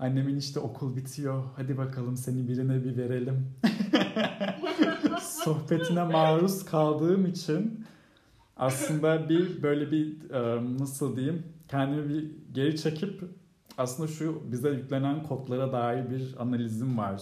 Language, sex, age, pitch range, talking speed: Turkish, male, 40-59, 115-150 Hz, 115 wpm